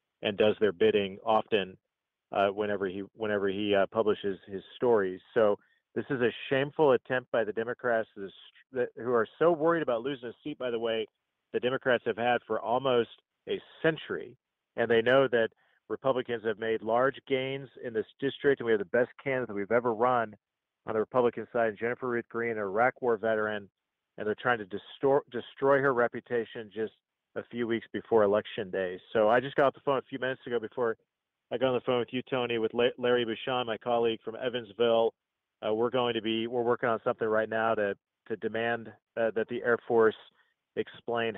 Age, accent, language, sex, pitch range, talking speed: 40-59, American, English, male, 110-125 Hz, 195 wpm